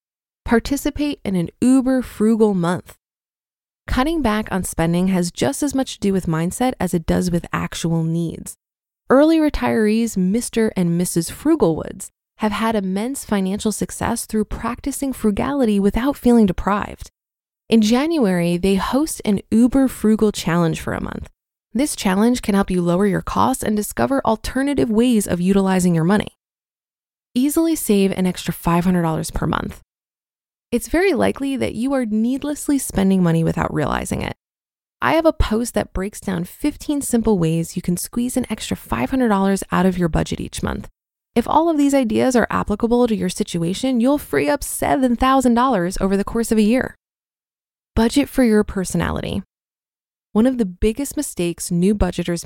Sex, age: female, 20-39